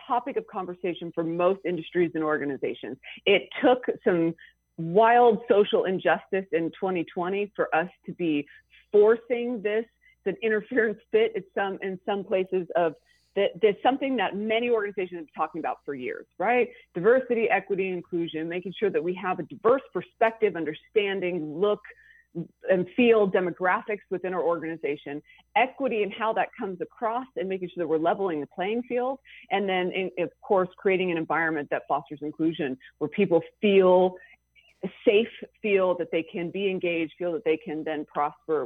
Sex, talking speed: female, 165 wpm